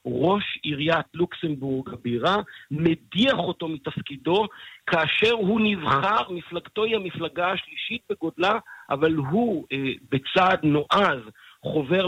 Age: 50-69